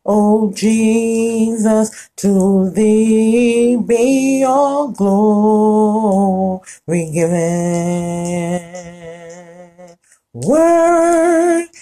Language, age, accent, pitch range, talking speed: English, 30-49, American, 215-275 Hz, 50 wpm